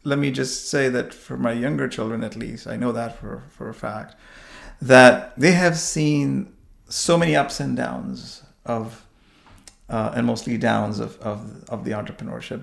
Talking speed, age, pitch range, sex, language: 175 wpm, 40-59, 105-150 Hz, male, English